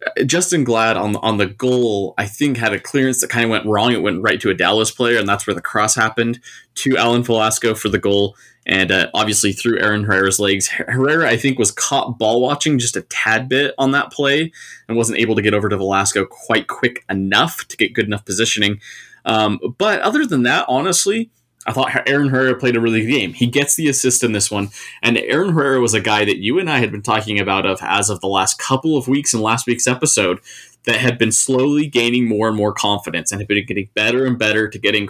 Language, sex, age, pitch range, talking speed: English, male, 20-39, 105-130 Hz, 235 wpm